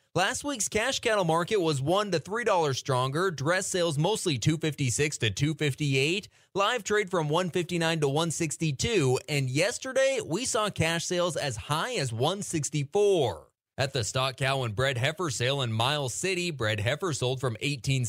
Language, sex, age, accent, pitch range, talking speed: English, male, 20-39, American, 120-175 Hz, 195 wpm